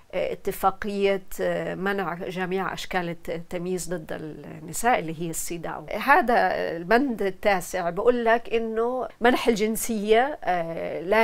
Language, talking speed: Arabic, 100 wpm